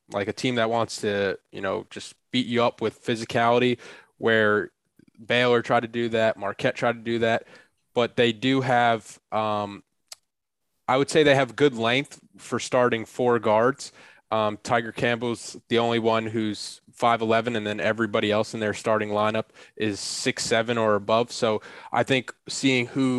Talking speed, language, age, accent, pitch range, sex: 170 wpm, English, 20-39, American, 110-120 Hz, male